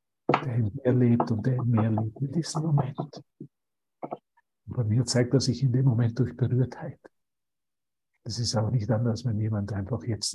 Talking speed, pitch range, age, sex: 185 wpm, 120-150 Hz, 60-79, male